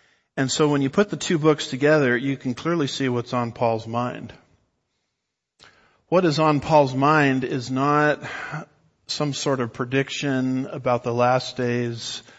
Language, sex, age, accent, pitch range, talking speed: English, male, 50-69, American, 120-145 Hz, 155 wpm